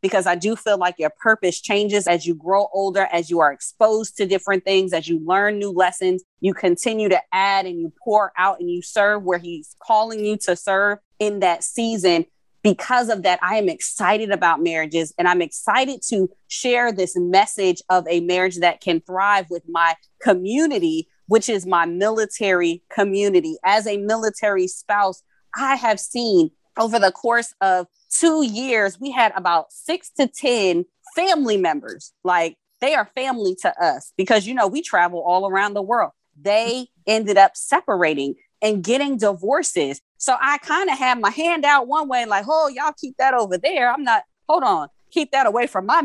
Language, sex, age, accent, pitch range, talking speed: English, female, 20-39, American, 185-255 Hz, 185 wpm